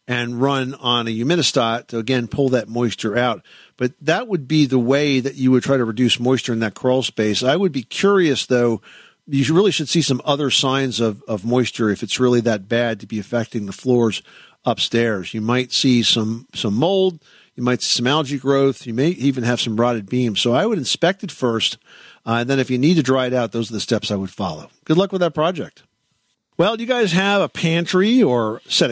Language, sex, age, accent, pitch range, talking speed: English, male, 50-69, American, 115-155 Hz, 230 wpm